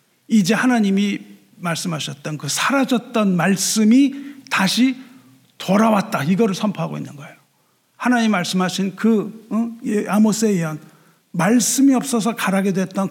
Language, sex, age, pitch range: Korean, male, 50-69, 190-245 Hz